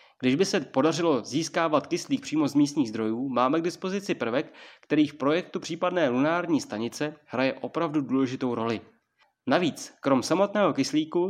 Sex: male